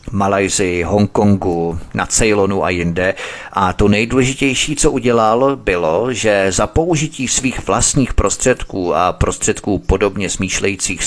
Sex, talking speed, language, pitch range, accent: male, 115 wpm, Czech, 95-120 Hz, native